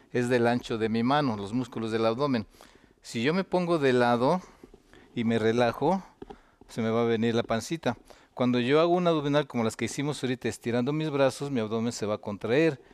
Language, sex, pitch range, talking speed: Spanish, male, 115-150 Hz, 210 wpm